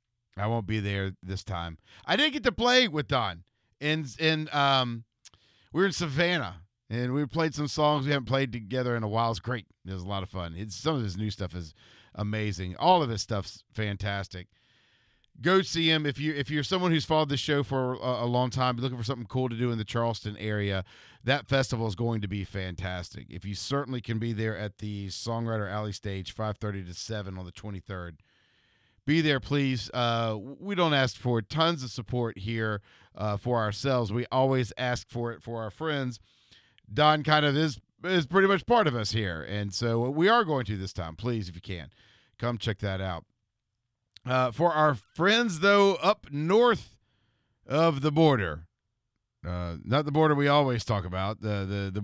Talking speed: 205 wpm